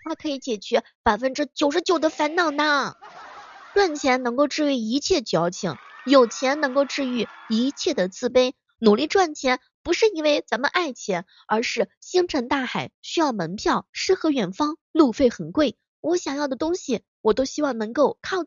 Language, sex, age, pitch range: Chinese, female, 20-39, 215-310 Hz